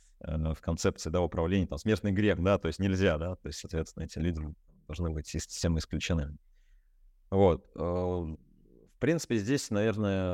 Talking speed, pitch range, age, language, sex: 150 wpm, 80-100 Hz, 20-39, Russian, male